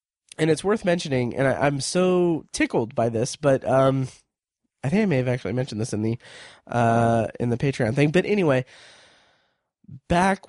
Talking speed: 170 wpm